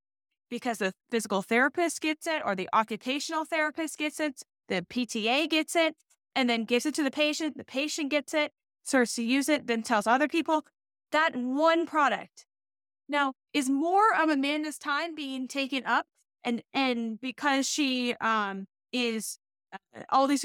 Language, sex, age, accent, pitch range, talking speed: English, female, 10-29, American, 225-285 Hz, 165 wpm